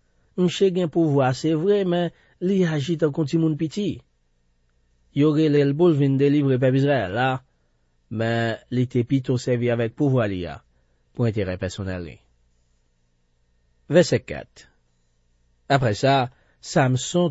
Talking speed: 130 wpm